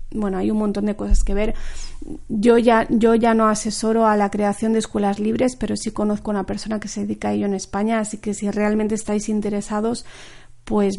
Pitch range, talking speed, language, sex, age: 195-230 Hz, 220 wpm, Spanish, female, 40-59